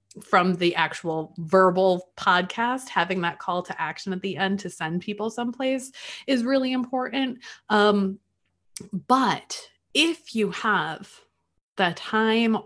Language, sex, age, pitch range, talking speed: English, female, 20-39, 170-215 Hz, 130 wpm